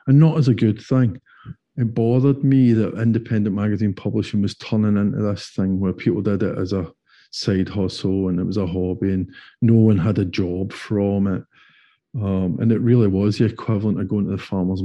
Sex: male